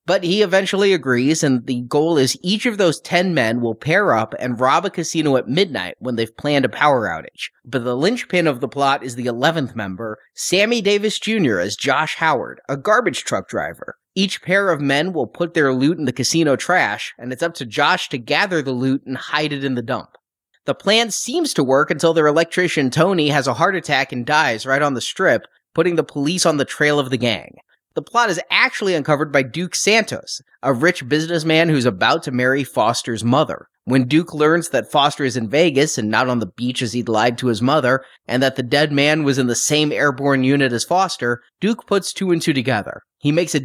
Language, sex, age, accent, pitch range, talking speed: English, male, 30-49, American, 130-170 Hz, 220 wpm